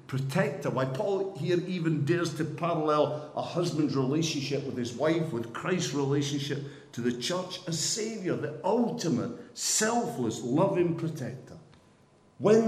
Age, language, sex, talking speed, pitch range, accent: 50-69, English, male, 135 wpm, 115-165 Hz, British